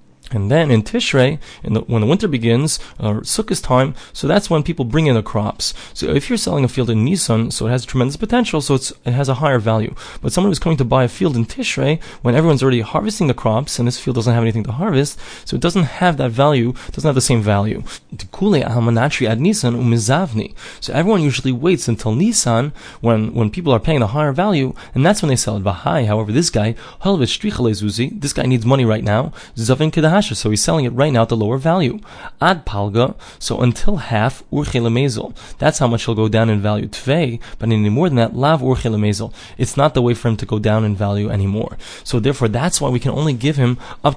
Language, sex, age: English, male, 30-49